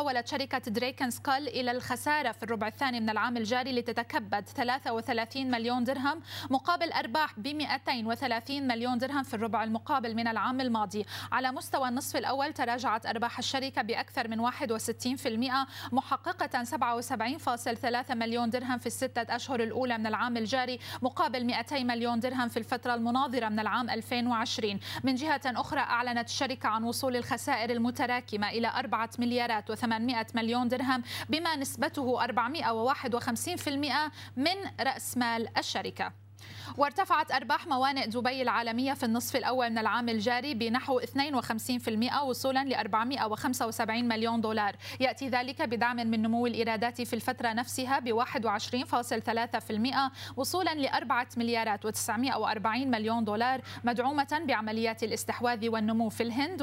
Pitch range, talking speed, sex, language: 230-265 Hz, 130 wpm, female, Arabic